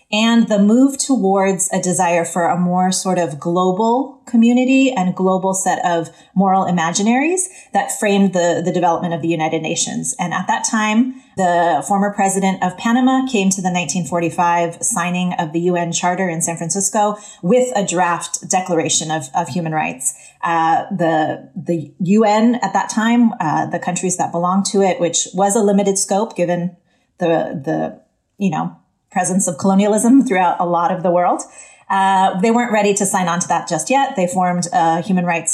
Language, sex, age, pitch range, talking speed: English, female, 30-49, 170-210 Hz, 180 wpm